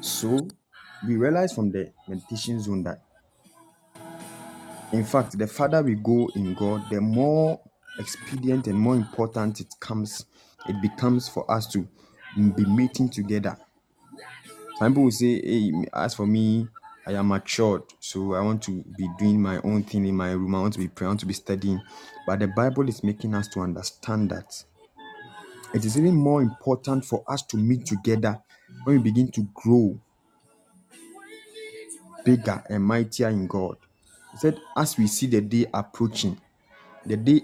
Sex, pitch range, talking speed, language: male, 105-130 Hz, 165 wpm, English